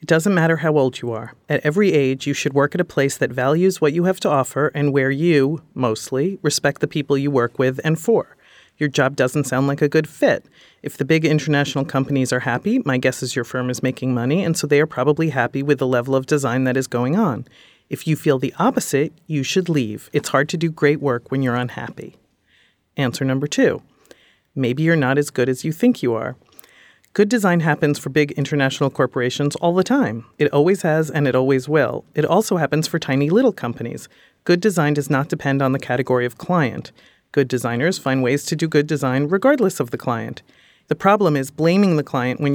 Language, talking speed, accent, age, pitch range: English, 220 wpm, American, 40-59, 135-160 Hz